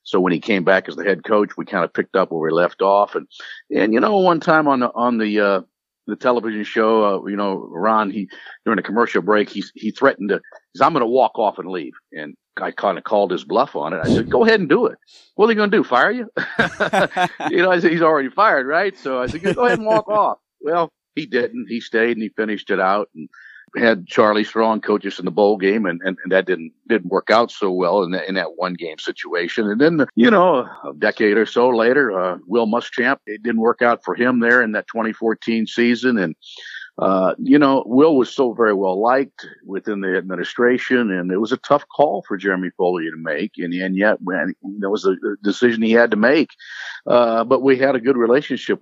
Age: 50-69